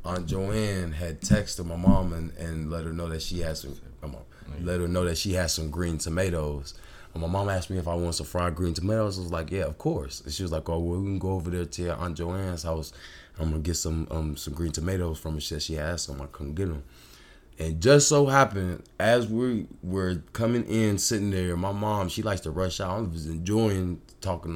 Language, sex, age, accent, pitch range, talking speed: English, male, 20-39, American, 80-100 Hz, 240 wpm